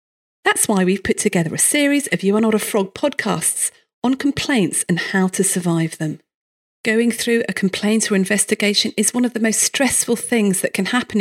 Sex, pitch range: female, 190-245 Hz